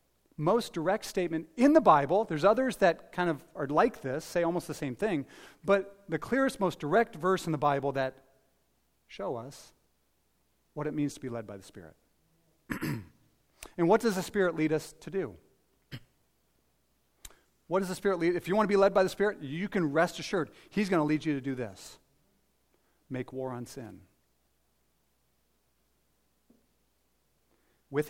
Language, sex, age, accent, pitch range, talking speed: English, male, 40-59, American, 105-170 Hz, 170 wpm